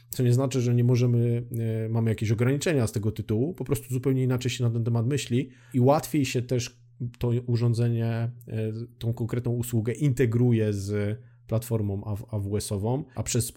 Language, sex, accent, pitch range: Polish, male, native, 110-120 Hz